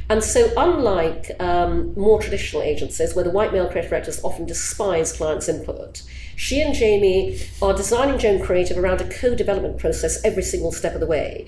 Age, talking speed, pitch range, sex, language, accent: 40-59, 180 wpm, 175-260 Hz, female, English, British